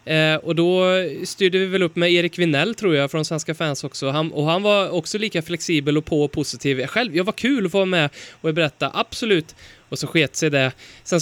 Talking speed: 240 wpm